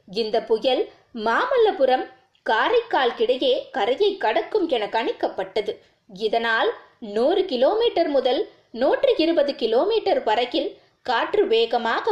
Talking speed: 85 wpm